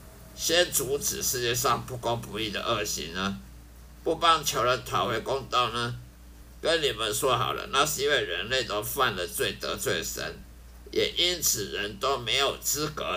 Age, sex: 50-69, male